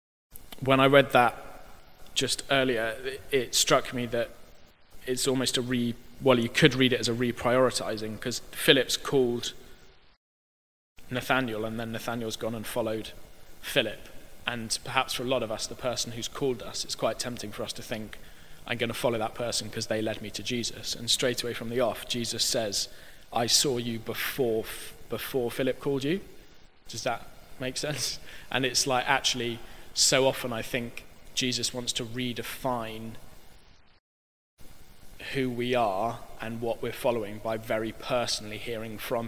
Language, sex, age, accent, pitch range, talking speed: English, male, 20-39, British, 110-125 Hz, 165 wpm